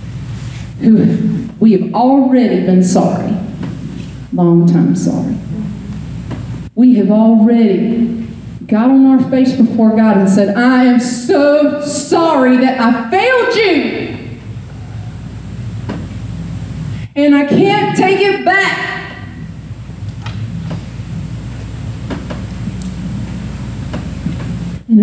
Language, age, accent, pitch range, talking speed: English, 40-59, American, 160-250 Hz, 85 wpm